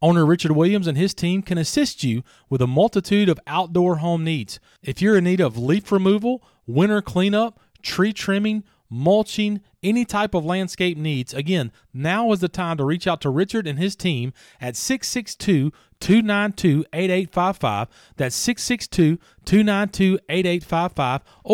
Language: English